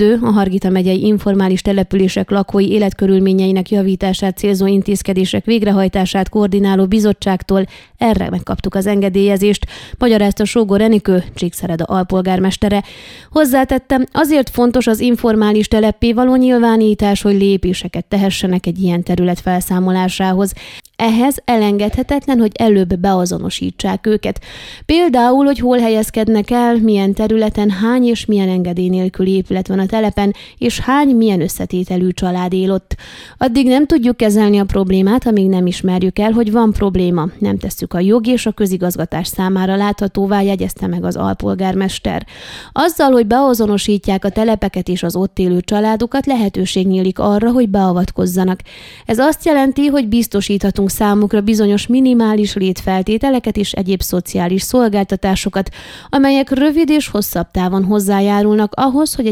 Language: Hungarian